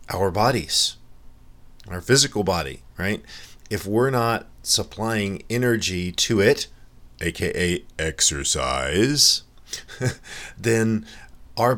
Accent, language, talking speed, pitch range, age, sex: American, English, 85 wpm, 85-105 Hz, 40-59, male